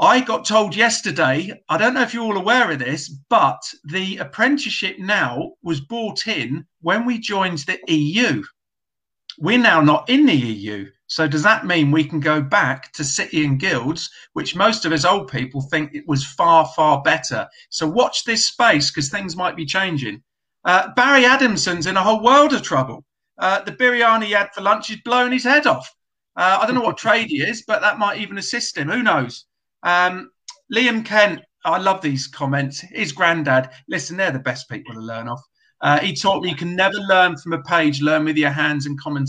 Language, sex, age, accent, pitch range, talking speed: English, male, 50-69, British, 150-220 Hz, 205 wpm